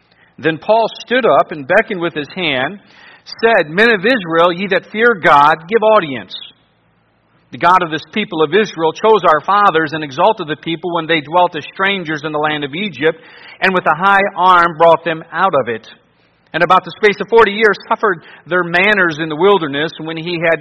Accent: American